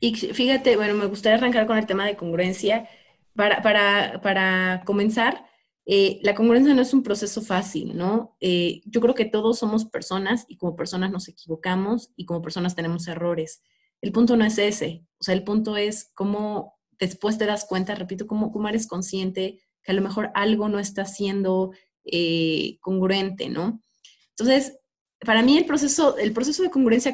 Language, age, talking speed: Spanish, 30-49, 180 wpm